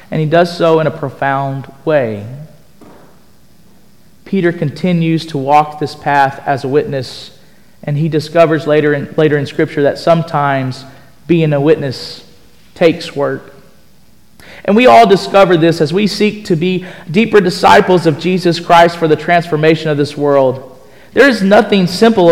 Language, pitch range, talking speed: English, 145-195 Hz, 150 wpm